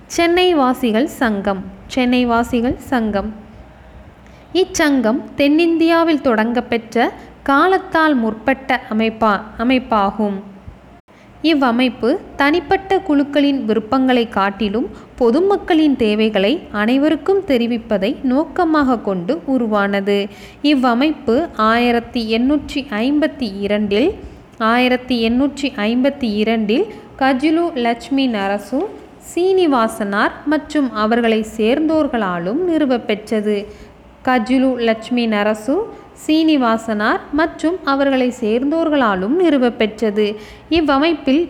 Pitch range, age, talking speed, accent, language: 225-300 Hz, 20-39, 75 wpm, native, Tamil